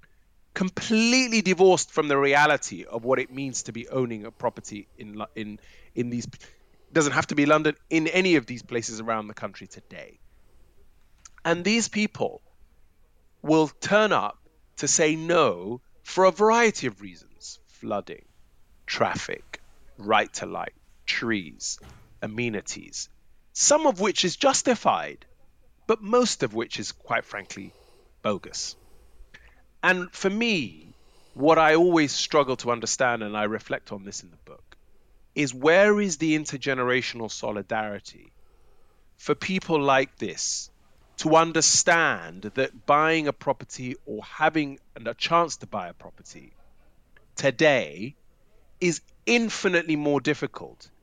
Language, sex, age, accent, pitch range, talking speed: English, male, 30-49, British, 110-170 Hz, 130 wpm